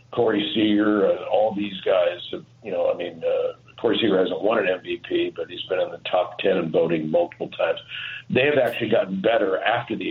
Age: 50-69